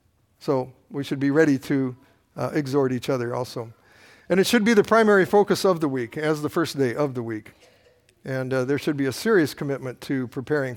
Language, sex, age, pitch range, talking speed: English, male, 50-69, 140-185 Hz, 210 wpm